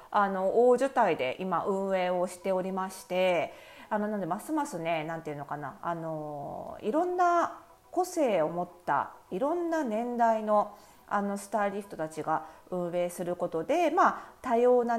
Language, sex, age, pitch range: Japanese, female, 40-59, 170-245 Hz